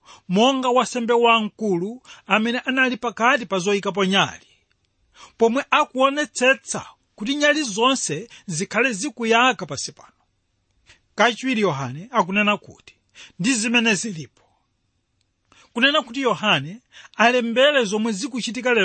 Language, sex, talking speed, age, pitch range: English, male, 95 wpm, 40-59, 190-260 Hz